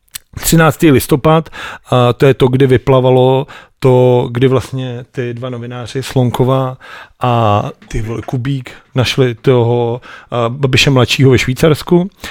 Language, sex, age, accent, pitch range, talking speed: Czech, male, 40-59, native, 125-155 Hz, 115 wpm